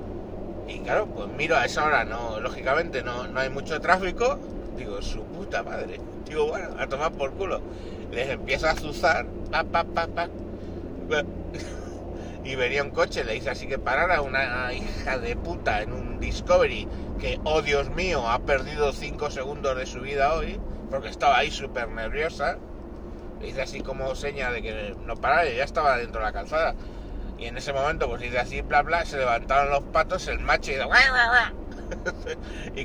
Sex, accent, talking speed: male, Spanish, 180 wpm